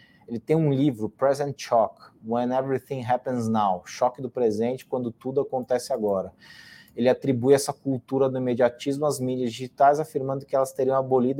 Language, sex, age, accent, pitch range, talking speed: Portuguese, male, 20-39, Brazilian, 115-140 Hz, 165 wpm